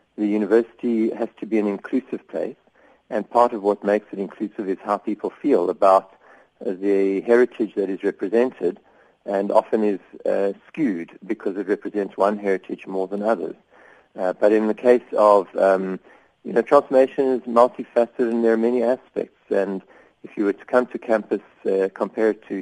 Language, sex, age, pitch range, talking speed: English, male, 50-69, 100-115 Hz, 175 wpm